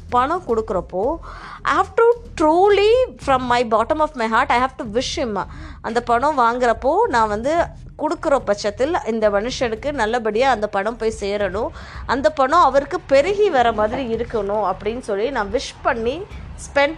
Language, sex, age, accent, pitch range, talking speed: Tamil, female, 20-39, native, 220-315 Hz, 155 wpm